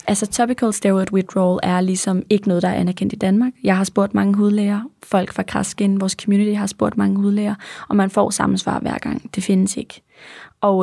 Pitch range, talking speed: 190-215 Hz, 205 wpm